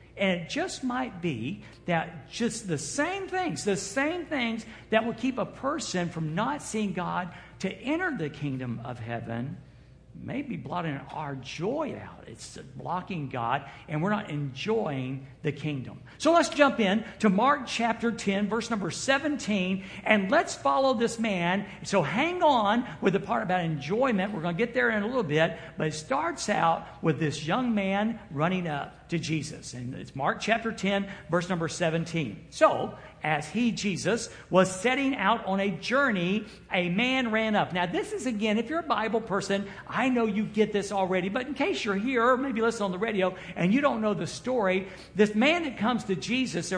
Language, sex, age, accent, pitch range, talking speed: English, male, 60-79, American, 170-235 Hz, 190 wpm